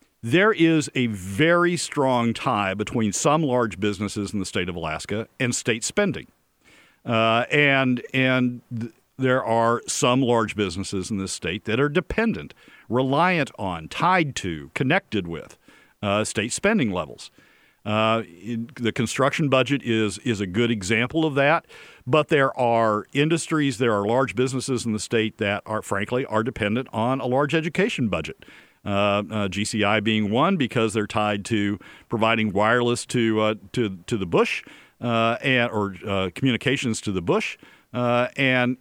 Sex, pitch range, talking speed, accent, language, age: male, 105-140 Hz, 160 wpm, American, English, 50-69